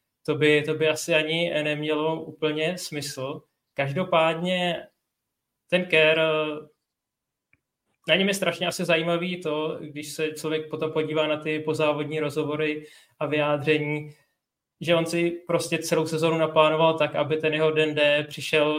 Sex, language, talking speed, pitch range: male, Czech, 135 wpm, 145-155 Hz